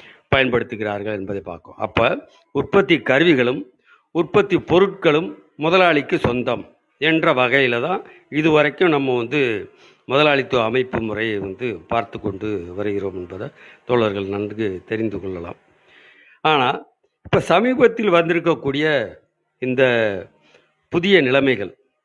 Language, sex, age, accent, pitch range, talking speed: Tamil, male, 50-69, native, 115-150 Hz, 95 wpm